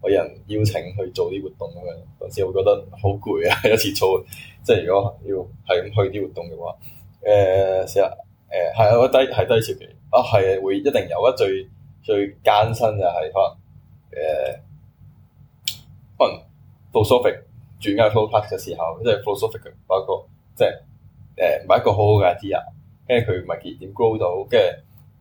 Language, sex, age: Chinese, male, 10-29